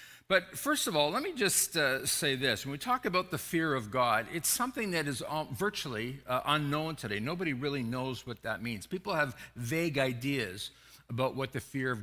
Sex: male